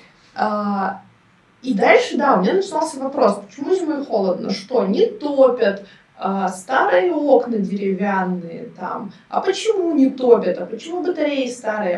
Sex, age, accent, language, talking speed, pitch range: female, 20-39, native, Russian, 125 wpm, 195-265 Hz